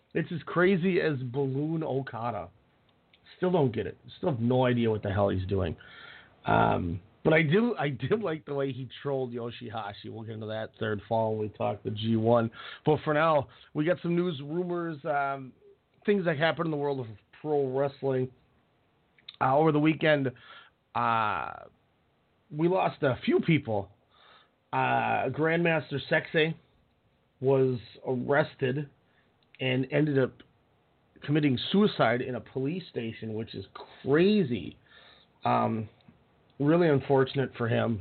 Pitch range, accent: 120-150 Hz, American